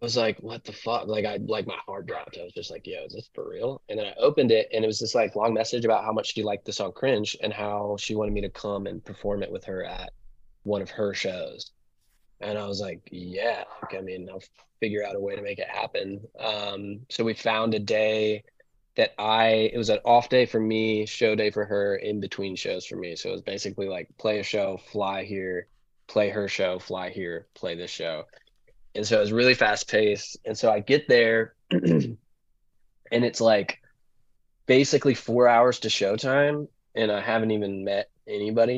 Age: 20-39